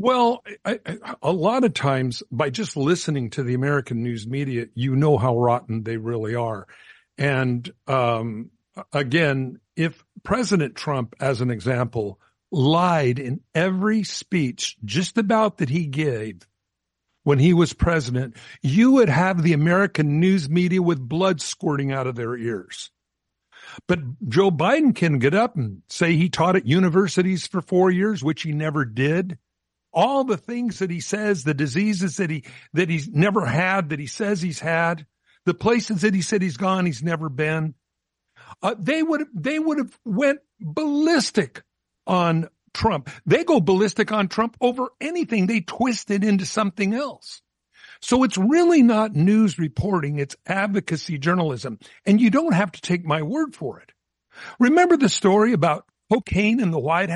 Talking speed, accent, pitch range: 165 wpm, American, 140-210 Hz